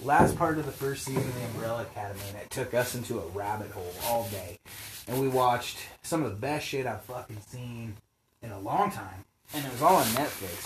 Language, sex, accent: English, male, American